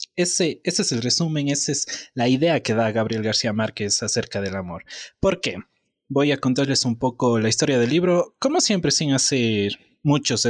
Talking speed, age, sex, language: 190 wpm, 20-39, male, Spanish